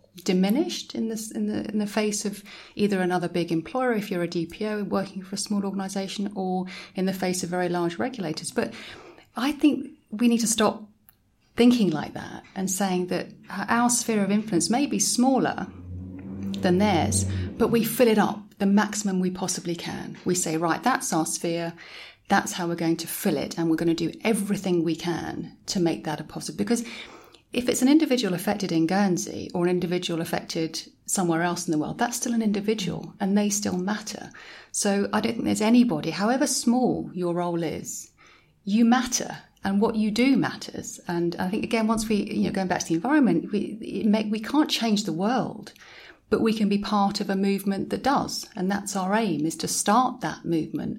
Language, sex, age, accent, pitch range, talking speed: English, female, 30-49, British, 175-220 Hz, 195 wpm